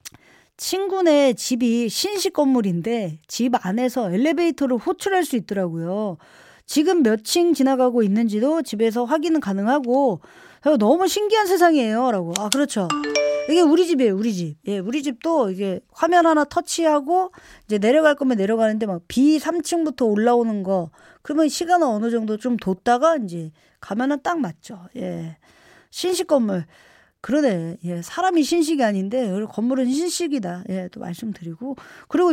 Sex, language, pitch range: female, Korean, 210-320 Hz